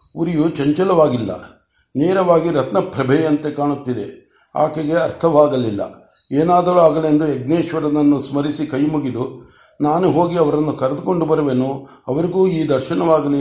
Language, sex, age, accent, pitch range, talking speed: Kannada, male, 60-79, native, 135-160 Hz, 95 wpm